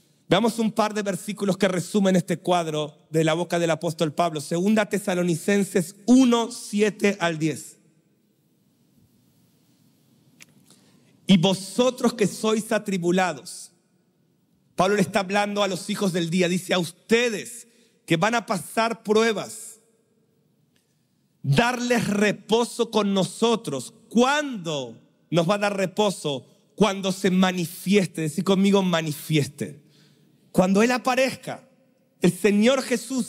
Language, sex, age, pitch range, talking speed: Spanish, male, 40-59, 180-220 Hz, 115 wpm